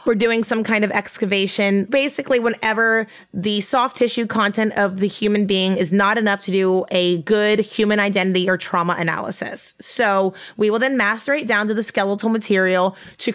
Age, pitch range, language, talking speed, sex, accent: 20-39, 195-230 Hz, English, 175 wpm, female, American